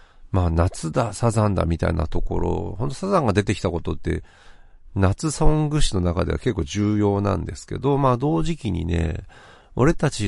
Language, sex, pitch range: Japanese, male, 90-145 Hz